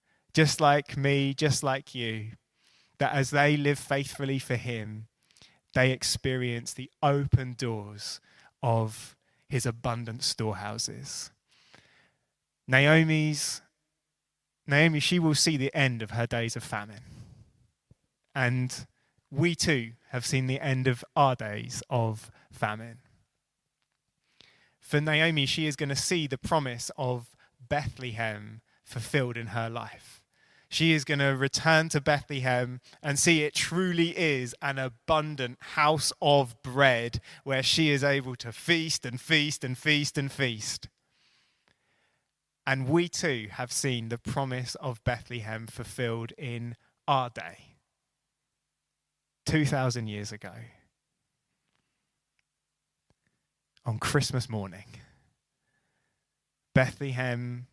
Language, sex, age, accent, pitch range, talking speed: English, male, 20-39, British, 120-145 Hz, 115 wpm